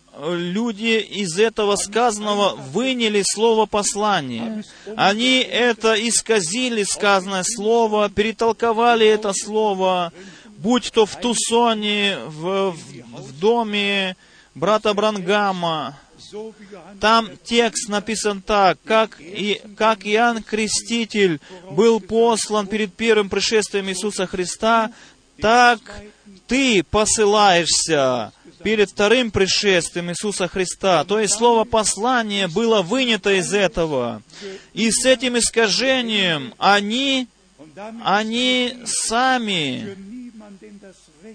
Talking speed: 90 wpm